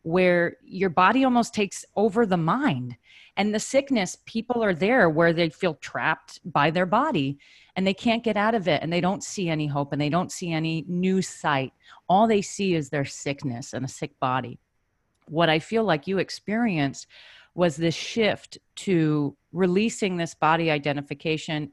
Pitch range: 155-220 Hz